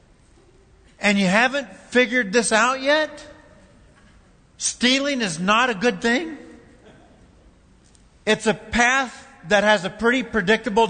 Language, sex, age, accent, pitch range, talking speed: English, male, 50-69, American, 210-265 Hz, 115 wpm